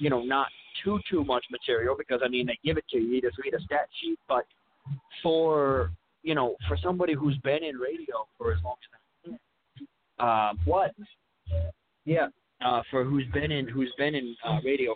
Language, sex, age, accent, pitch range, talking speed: English, male, 30-49, American, 115-155 Hz, 195 wpm